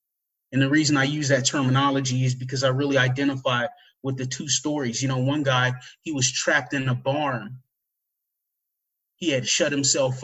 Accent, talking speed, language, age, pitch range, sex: American, 175 wpm, English, 30-49, 130-155 Hz, male